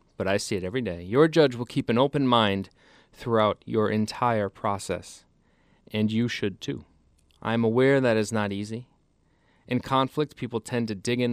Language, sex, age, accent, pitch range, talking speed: English, male, 30-49, American, 100-125 Hz, 185 wpm